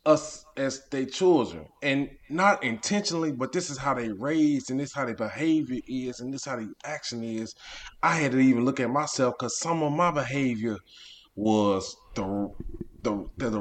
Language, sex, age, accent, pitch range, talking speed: English, male, 20-39, American, 115-155 Hz, 190 wpm